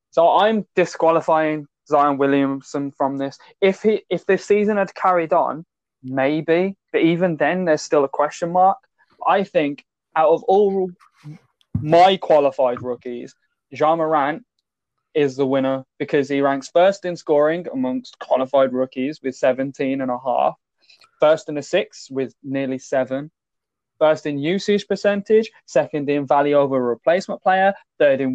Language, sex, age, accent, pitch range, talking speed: English, male, 20-39, British, 140-185 Hz, 150 wpm